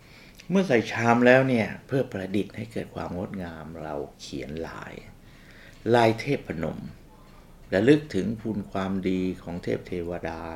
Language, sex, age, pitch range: Thai, male, 60-79, 80-105 Hz